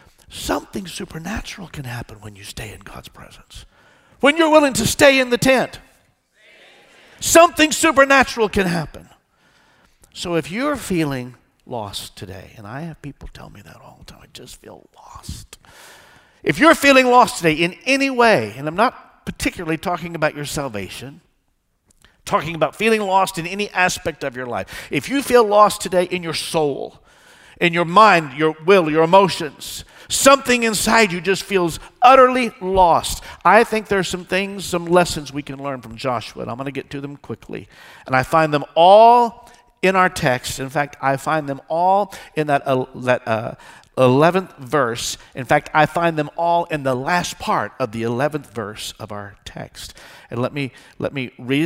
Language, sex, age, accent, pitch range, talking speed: English, male, 50-69, American, 130-200 Hz, 180 wpm